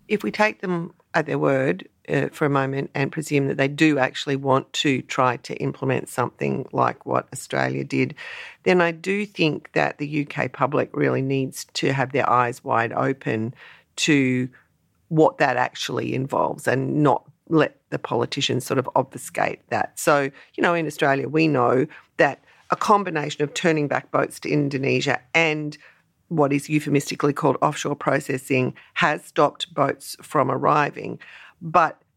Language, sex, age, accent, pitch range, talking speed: English, female, 40-59, Australian, 140-170 Hz, 160 wpm